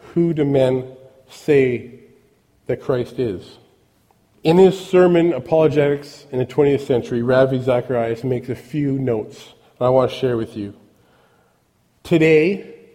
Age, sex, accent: 40-59, male, American